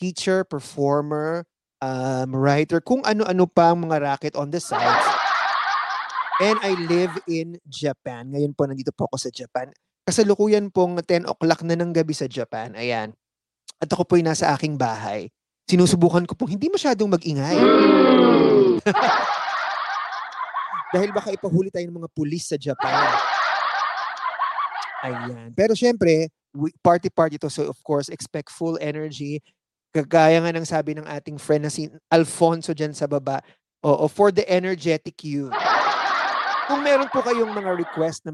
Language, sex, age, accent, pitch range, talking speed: English, male, 20-39, Filipino, 145-185 Hz, 145 wpm